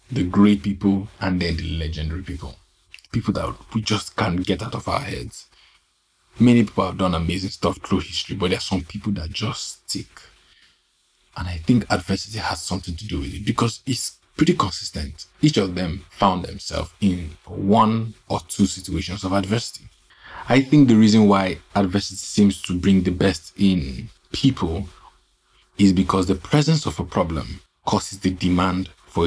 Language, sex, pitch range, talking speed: English, male, 90-100 Hz, 170 wpm